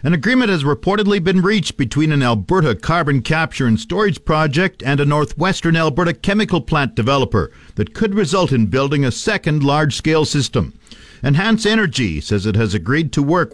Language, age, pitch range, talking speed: English, 50-69, 115-155 Hz, 170 wpm